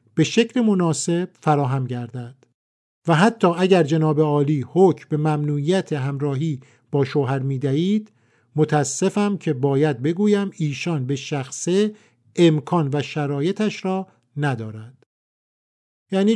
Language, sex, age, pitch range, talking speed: Persian, male, 50-69, 130-190 Hz, 115 wpm